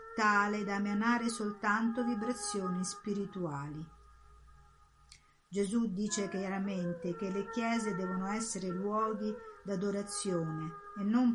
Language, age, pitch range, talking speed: Italian, 50-69, 175-215 Hz, 95 wpm